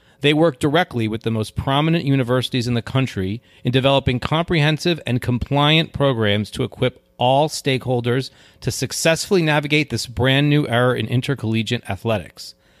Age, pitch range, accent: 30-49, 115-140 Hz, American